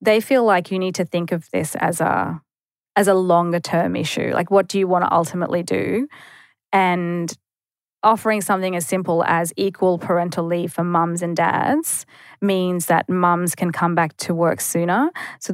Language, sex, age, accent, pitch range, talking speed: English, female, 20-39, Australian, 170-190 Hz, 180 wpm